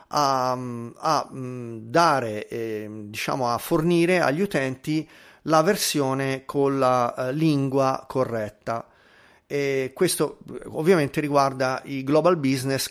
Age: 40-59